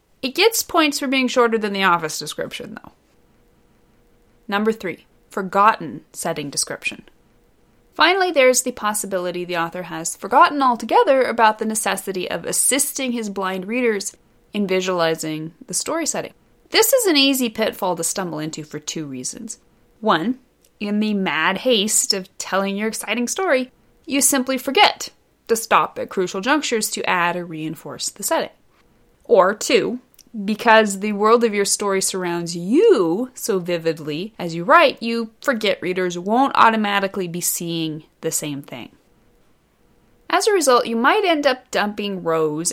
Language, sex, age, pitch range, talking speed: English, female, 30-49, 175-255 Hz, 150 wpm